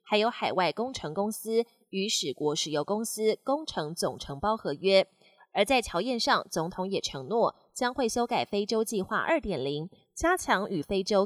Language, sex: Chinese, female